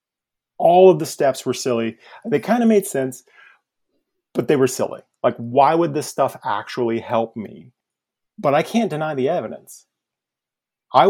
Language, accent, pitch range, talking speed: English, American, 115-155 Hz, 160 wpm